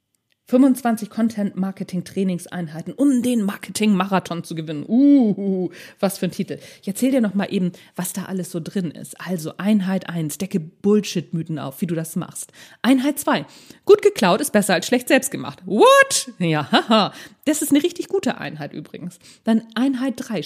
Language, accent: German, German